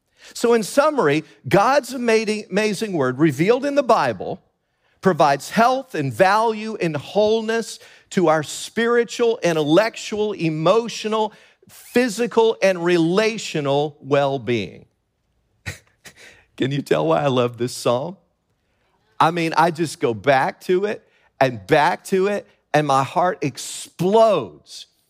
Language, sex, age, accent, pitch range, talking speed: English, male, 50-69, American, 135-205 Hz, 120 wpm